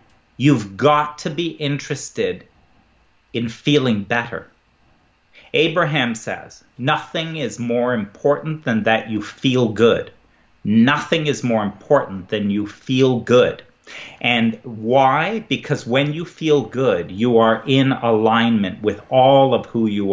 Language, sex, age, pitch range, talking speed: English, male, 40-59, 115-155 Hz, 130 wpm